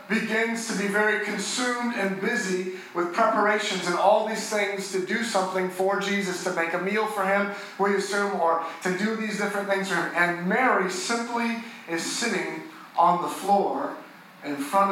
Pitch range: 175-215 Hz